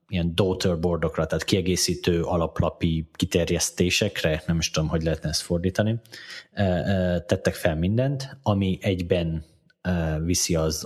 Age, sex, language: 30-49, male, Hungarian